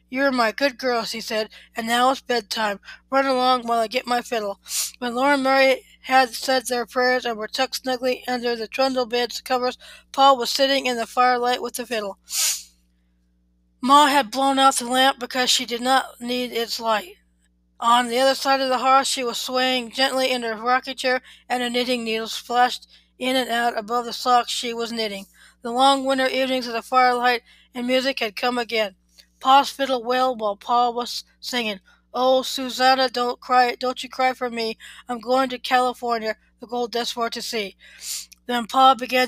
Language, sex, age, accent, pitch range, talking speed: English, female, 20-39, American, 230-255 Hz, 190 wpm